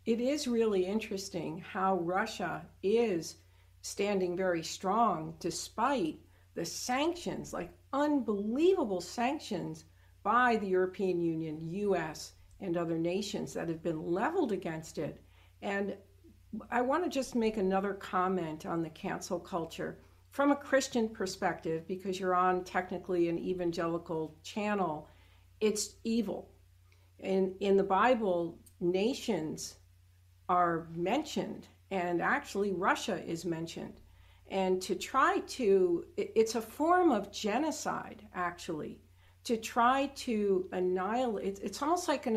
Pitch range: 165-220 Hz